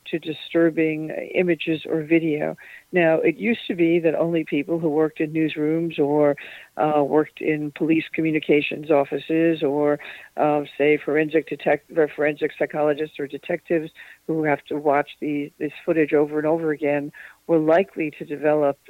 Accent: American